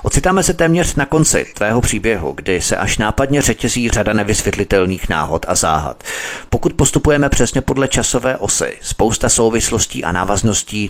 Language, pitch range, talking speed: Czech, 95-115 Hz, 150 wpm